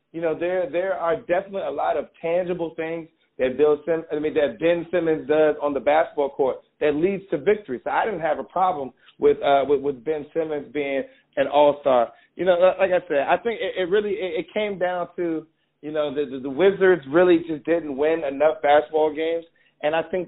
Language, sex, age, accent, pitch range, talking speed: English, male, 40-59, American, 150-185 Hz, 220 wpm